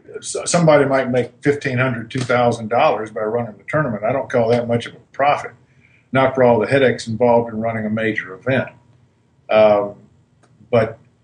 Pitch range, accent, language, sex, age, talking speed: 120-145 Hz, American, English, male, 50-69, 160 wpm